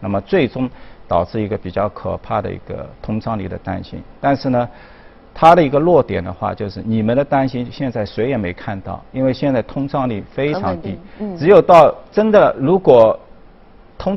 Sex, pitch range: male, 105-150 Hz